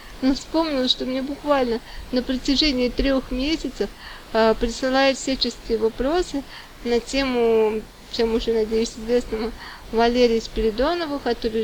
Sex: female